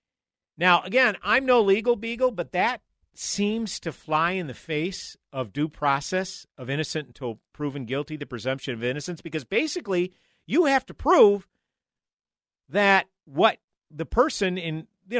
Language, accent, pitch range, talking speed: English, American, 145-205 Hz, 150 wpm